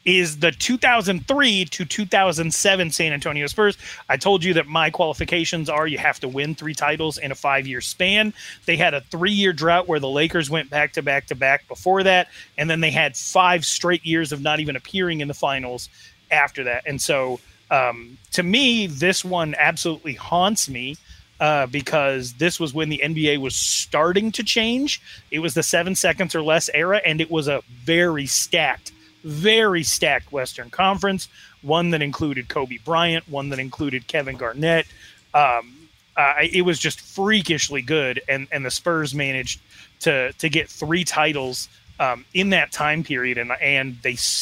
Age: 30-49